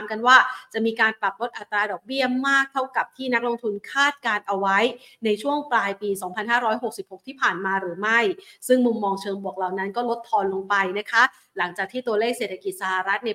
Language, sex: Thai, female